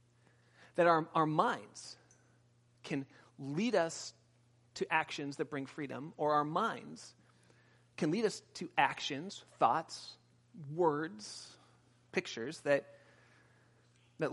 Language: English